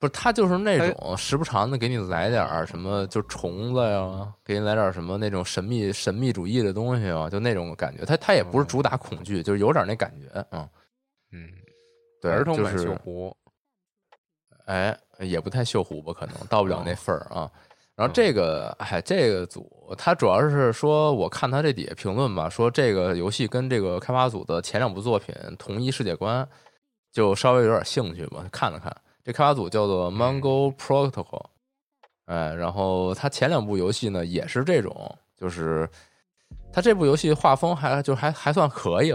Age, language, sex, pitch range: 20-39, Chinese, male, 90-135 Hz